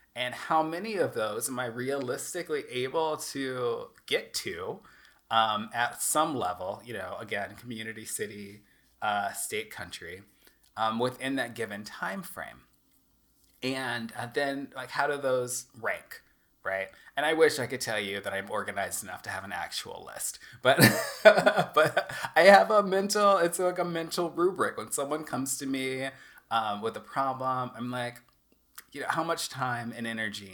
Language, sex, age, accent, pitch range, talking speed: English, male, 30-49, American, 110-140 Hz, 165 wpm